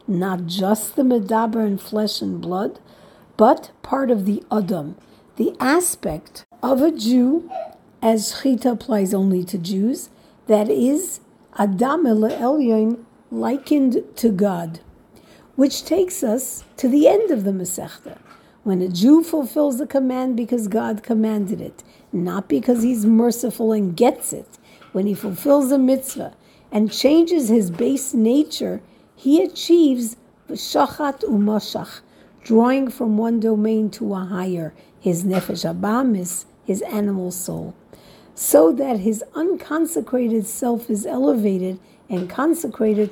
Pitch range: 200-260 Hz